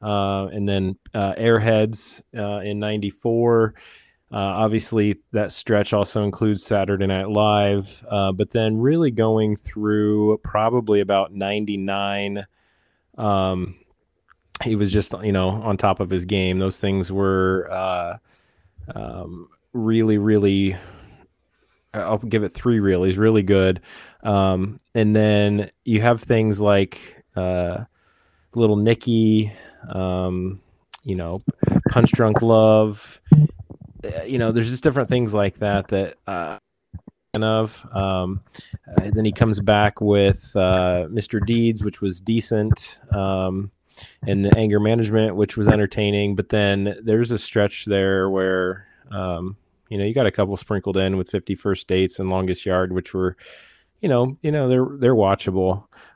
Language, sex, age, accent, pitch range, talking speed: English, male, 20-39, American, 95-110 Hz, 140 wpm